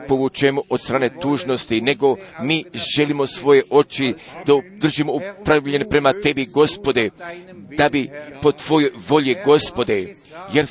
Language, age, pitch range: Croatian, 50-69, 150-180 Hz